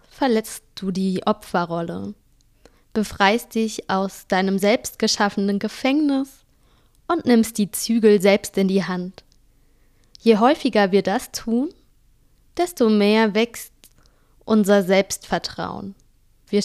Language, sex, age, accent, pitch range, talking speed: German, female, 20-39, German, 190-230 Hz, 105 wpm